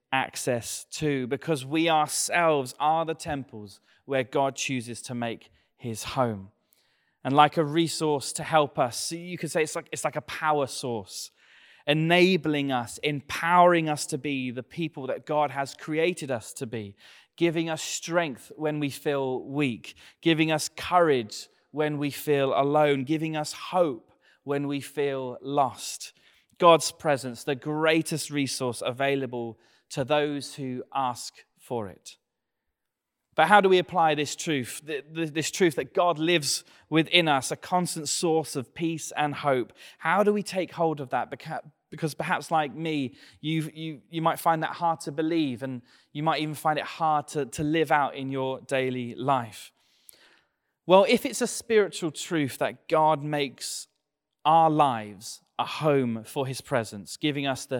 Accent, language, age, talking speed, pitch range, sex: British, English, 30-49, 160 wpm, 135-160 Hz, male